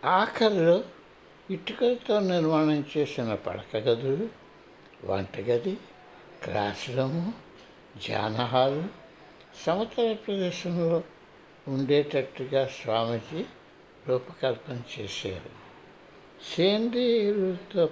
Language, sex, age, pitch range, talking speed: Telugu, male, 60-79, 125-185 Hz, 50 wpm